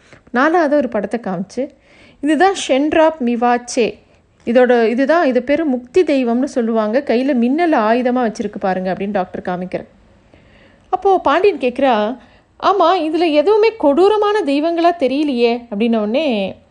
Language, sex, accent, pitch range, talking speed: Tamil, female, native, 230-300 Hz, 115 wpm